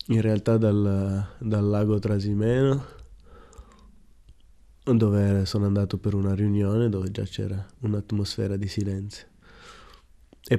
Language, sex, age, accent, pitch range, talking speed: Italian, male, 20-39, native, 95-110 Hz, 110 wpm